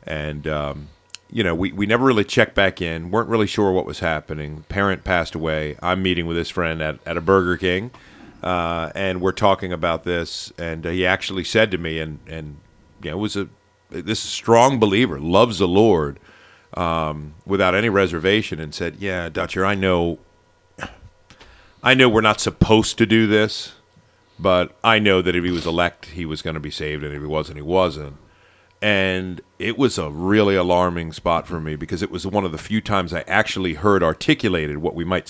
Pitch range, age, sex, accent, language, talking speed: 80-95 Hz, 50-69, male, American, English, 200 wpm